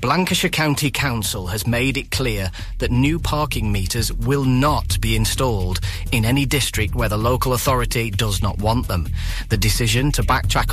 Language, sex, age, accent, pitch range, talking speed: English, male, 30-49, British, 105-135 Hz, 170 wpm